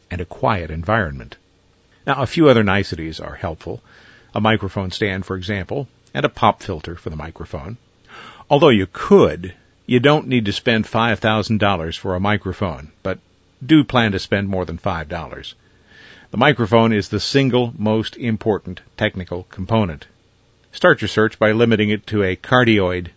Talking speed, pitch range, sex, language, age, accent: 160 wpm, 90-110 Hz, male, English, 50-69, American